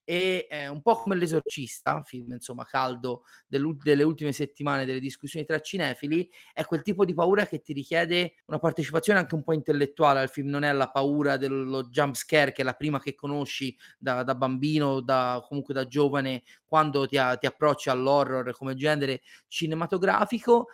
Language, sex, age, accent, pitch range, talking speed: Italian, male, 30-49, native, 135-170 Hz, 170 wpm